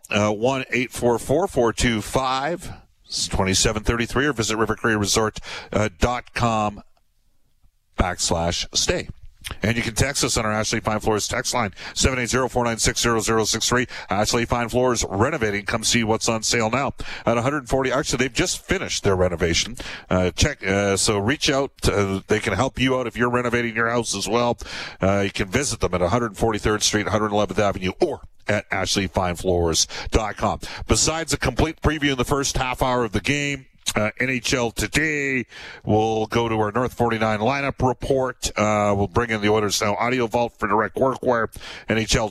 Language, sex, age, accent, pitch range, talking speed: English, male, 50-69, American, 105-125 Hz, 165 wpm